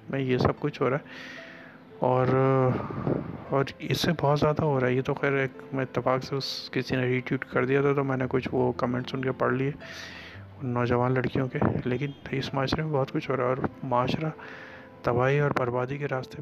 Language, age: Urdu, 30-49